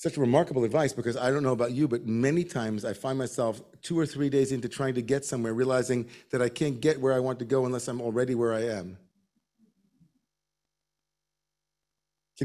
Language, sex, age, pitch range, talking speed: English, male, 40-59, 115-145 Hz, 200 wpm